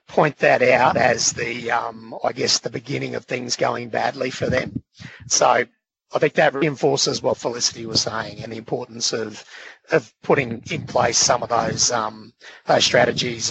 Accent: Australian